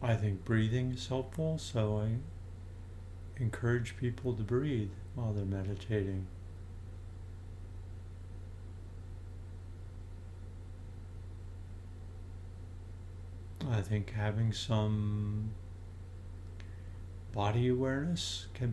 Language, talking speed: English, 65 wpm